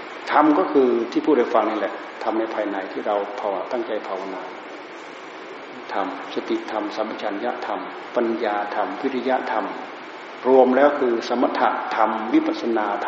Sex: male